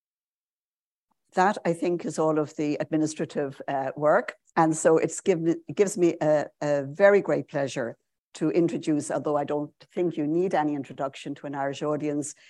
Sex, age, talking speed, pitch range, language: female, 60-79, 165 wpm, 145-170 Hz, English